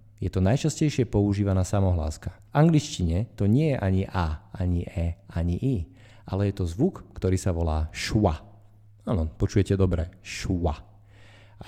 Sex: male